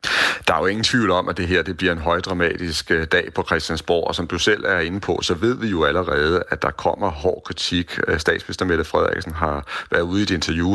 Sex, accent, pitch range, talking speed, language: male, native, 75-95 Hz, 235 wpm, Danish